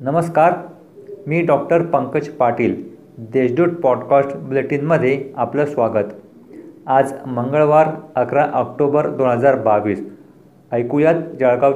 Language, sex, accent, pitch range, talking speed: Marathi, male, native, 125-155 Hz, 95 wpm